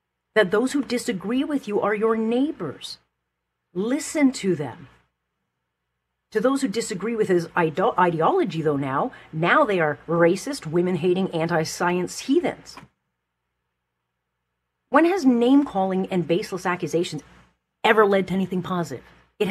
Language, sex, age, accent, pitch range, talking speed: English, female, 40-59, American, 130-215 Hz, 125 wpm